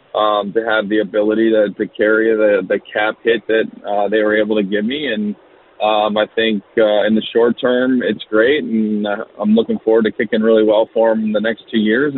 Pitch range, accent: 105-115 Hz, American